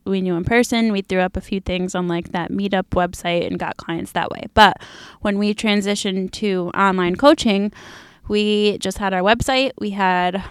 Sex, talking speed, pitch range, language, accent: female, 195 wpm, 185-205 Hz, English, American